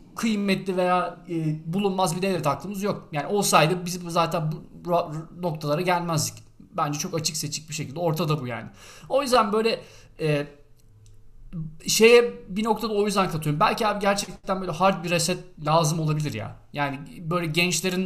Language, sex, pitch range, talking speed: Turkish, male, 145-185 Hz, 150 wpm